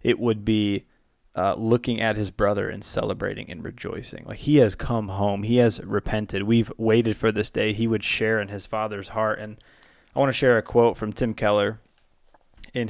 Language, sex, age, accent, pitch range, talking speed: English, male, 20-39, American, 105-120 Hz, 200 wpm